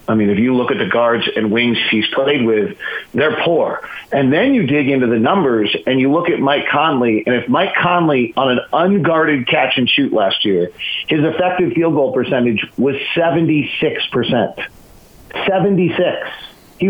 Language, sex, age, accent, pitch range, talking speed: English, male, 40-59, American, 130-180 Hz, 175 wpm